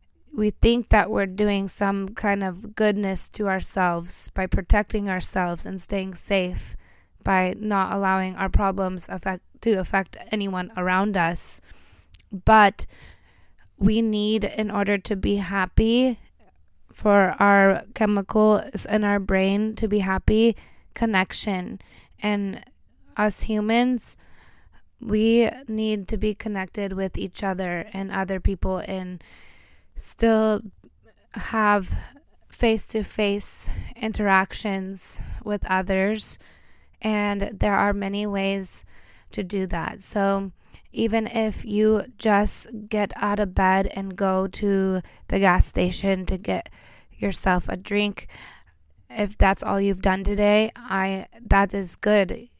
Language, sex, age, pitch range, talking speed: English, female, 20-39, 190-210 Hz, 120 wpm